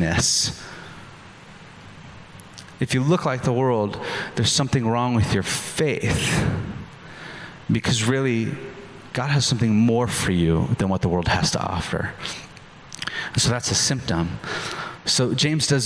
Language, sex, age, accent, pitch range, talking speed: English, male, 30-49, American, 115-150 Hz, 130 wpm